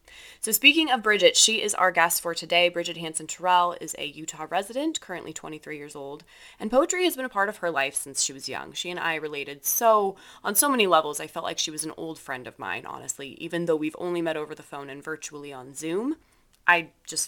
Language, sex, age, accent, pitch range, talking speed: English, female, 20-39, American, 150-180 Hz, 235 wpm